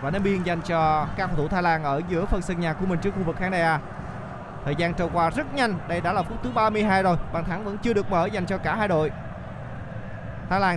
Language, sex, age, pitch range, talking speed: Vietnamese, male, 20-39, 175-215 Hz, 275 wpm